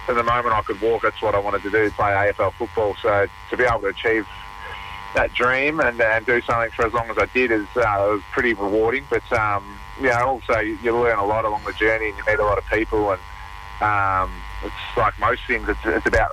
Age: 30-49